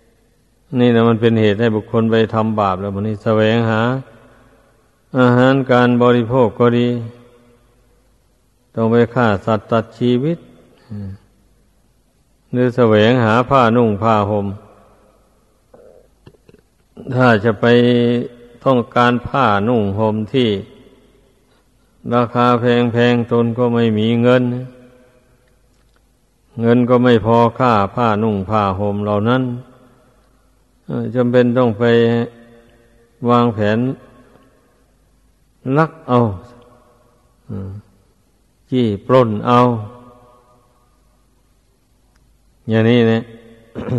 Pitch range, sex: 110-120 Hz, male